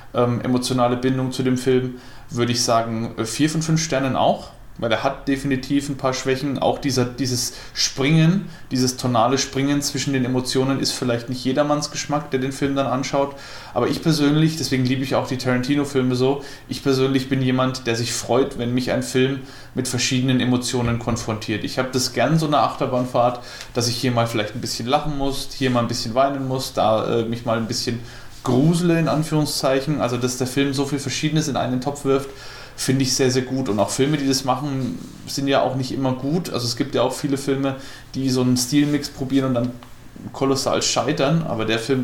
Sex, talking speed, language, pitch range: male, 200 wpm, German, 120-135 Hz